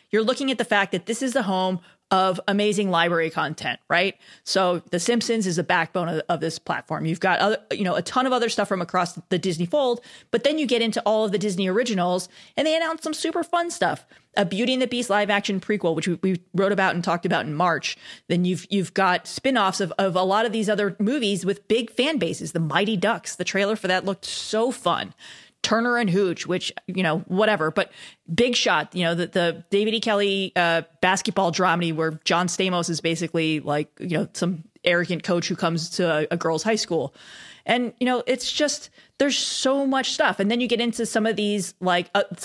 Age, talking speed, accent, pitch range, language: 30-49, 225 wpm, American, 175-225 Hz, English